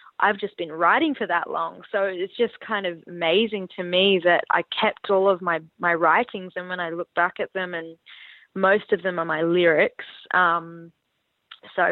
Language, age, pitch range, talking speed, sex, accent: English, 20-39, 175-210 Hz, 195 wpm, female, Australian